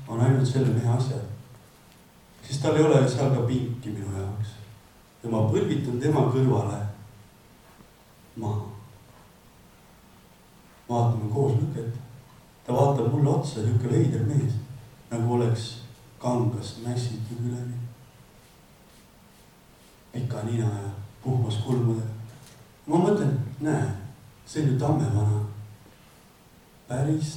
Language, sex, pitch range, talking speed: English, male, 115-135 Hz, 110 wpm